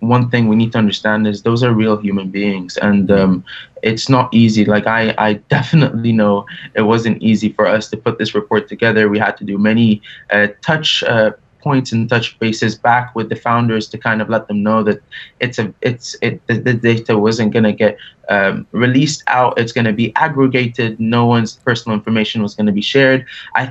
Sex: male